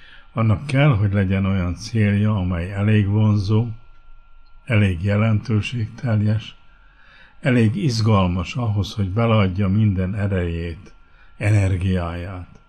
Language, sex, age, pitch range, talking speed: Hungarian, male, 60-79, 90-110 Hz, 90 wpm